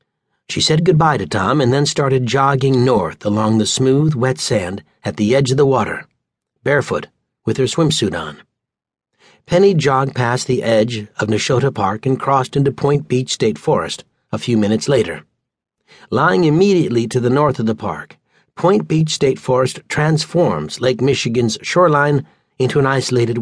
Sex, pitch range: male, 115-145 Hz